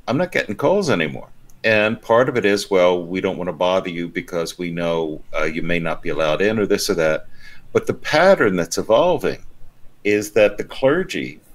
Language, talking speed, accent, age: English, 210 wpm, American, 60-79